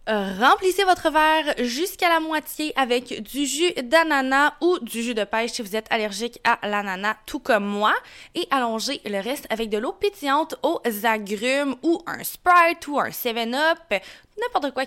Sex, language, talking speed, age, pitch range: female, French, 170 wpm, 20-39, 215-285 Hz